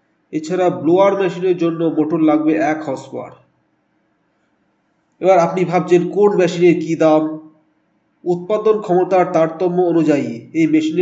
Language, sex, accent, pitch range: Bengali, male, native, 145-175 Hz